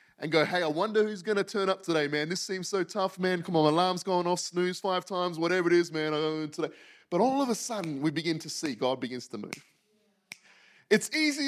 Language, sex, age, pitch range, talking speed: English, male, 30-49, 165-230 Hz, 240 wpm